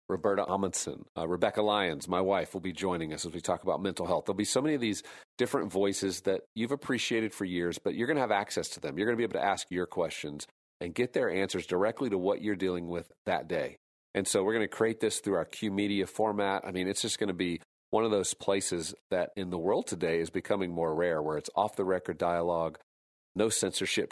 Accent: American